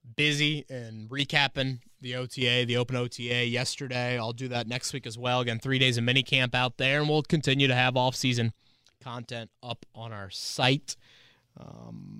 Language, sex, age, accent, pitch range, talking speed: English, male, 20-39, American, 115-150 Hz, 175 wpm